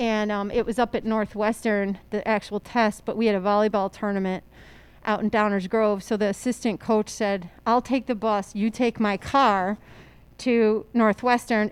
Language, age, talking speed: English, 40-59, 180 wpm